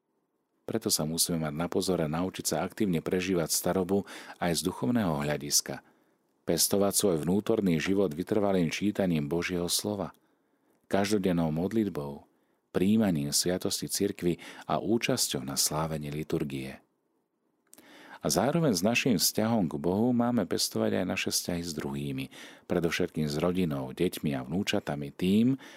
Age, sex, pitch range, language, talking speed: 40-59, male, 75-100 Hz, Slovak, 125 wpm